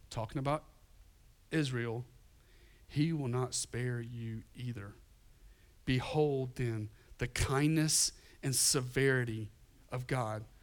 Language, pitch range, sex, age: English, 110-135 Hz, male, 40-59